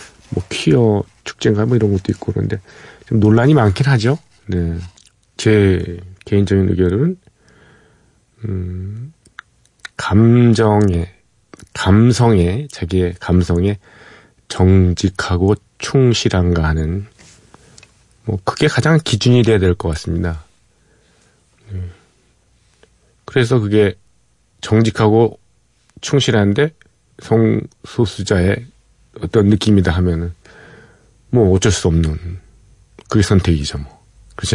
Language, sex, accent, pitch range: Korean, male, native, 90-120 Hz